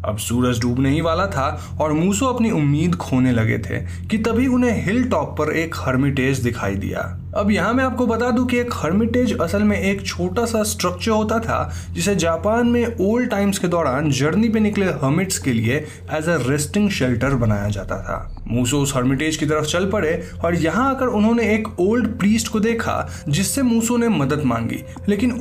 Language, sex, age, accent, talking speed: Hindi, male, 20-39, native, 155 wpm